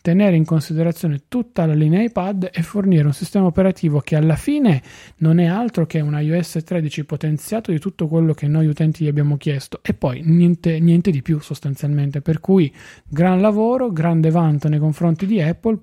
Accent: native